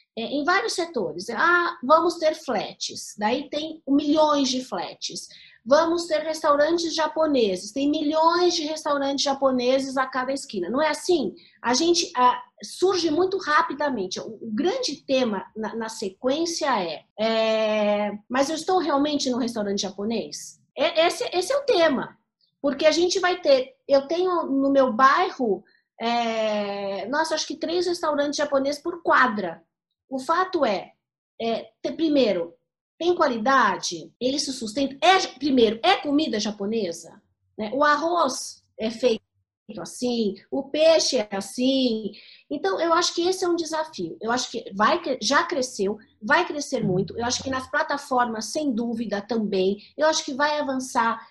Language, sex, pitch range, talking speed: Portuguese, female, 225-310 Hz, 145 wpm